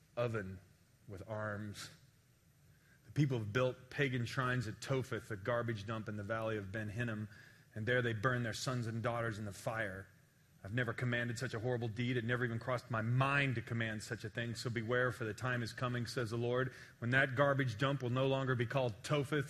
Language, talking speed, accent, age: English, 210 wpm, American, 40-59